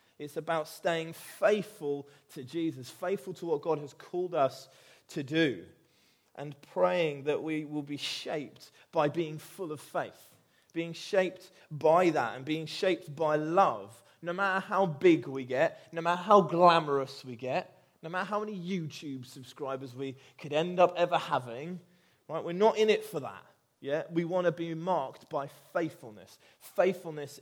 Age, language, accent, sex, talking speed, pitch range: 20-39, English, British, male, 165 wpm, 140-170 Hz